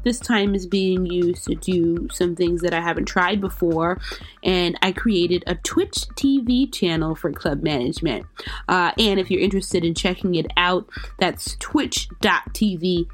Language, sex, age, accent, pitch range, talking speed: English, female, 20-39, American, 175-220 Hz, 160 wpm